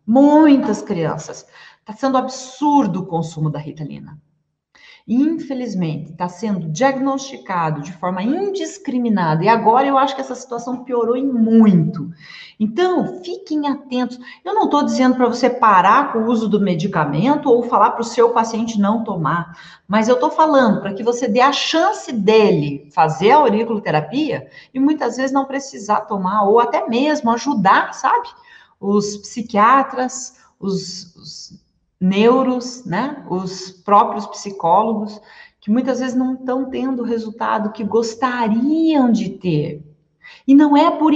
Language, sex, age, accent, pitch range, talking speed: Portuguese, female, 40-59, Brazilian, 195-275 Hz, 145 wpm